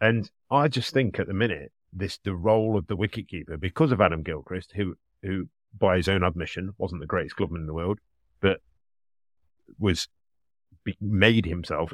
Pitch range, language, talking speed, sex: 85-110 Hz, English, 180 wpm, male